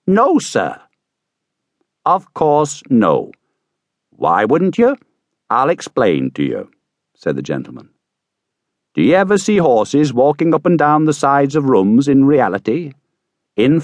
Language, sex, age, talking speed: English, male, 60-79, 135 wpm